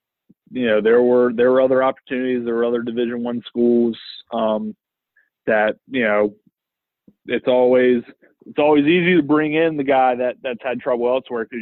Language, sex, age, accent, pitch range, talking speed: English, male, 20-39, American, 110-125 Hz, 175 wpm